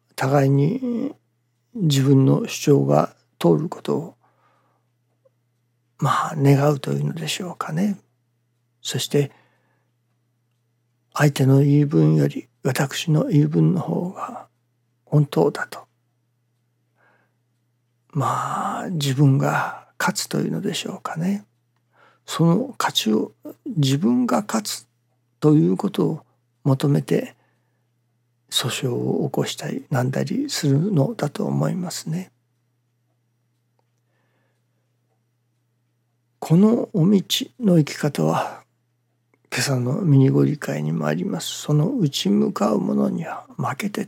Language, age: Japanese, 60-79